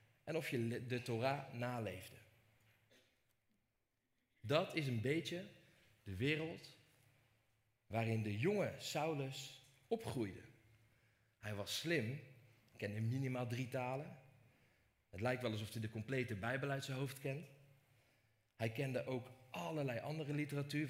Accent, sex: Dutch, male